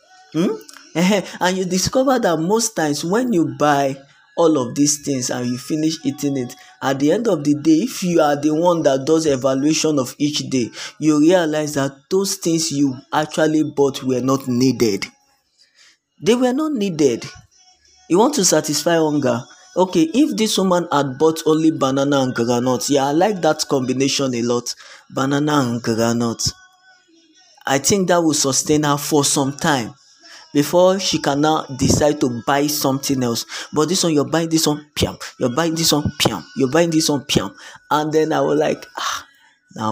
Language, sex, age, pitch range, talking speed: English, male, 20-39, 135-170 Hz, 175 wpm